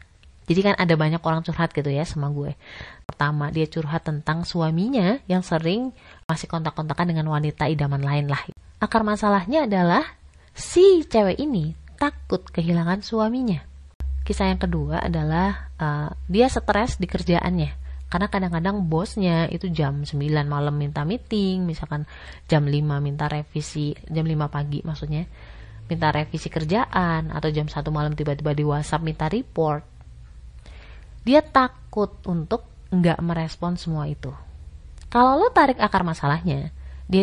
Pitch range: 150-220 Hz